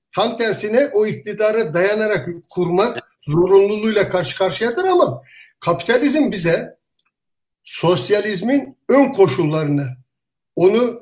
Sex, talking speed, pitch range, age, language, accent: male, 85 wpm, 170-205 Hz, 60-79, Turkish, native